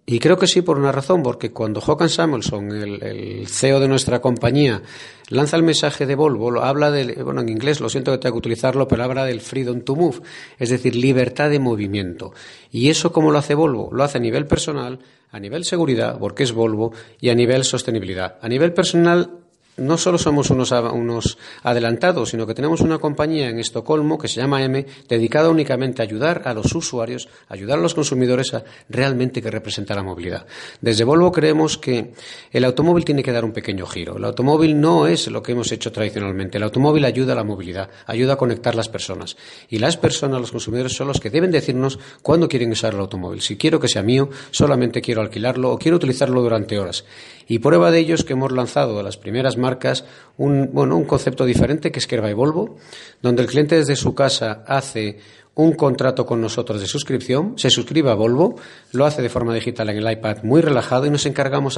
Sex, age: male, 40-59